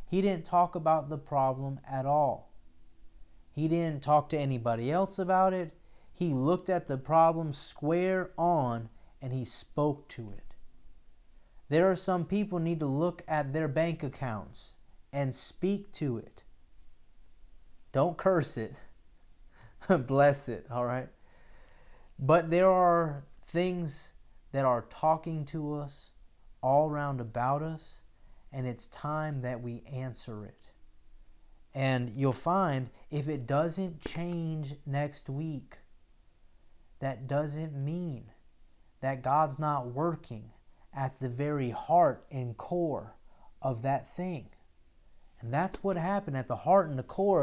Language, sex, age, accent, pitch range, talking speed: English, male, 30-49, American, 115-165 Hz, 130 wpm